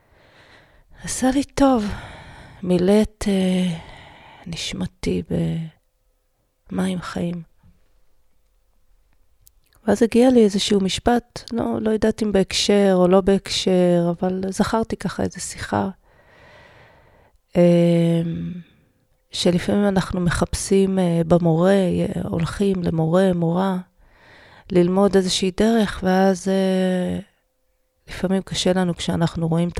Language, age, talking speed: Hebrew, 30-49, 85 wpm